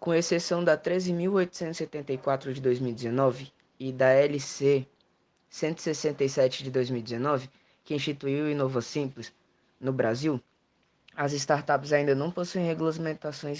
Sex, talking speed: female, 110 wpm